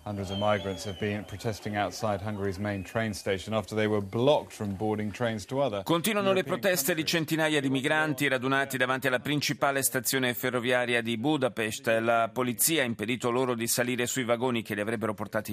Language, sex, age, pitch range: Italian, male, 30-49, 105-140 Hz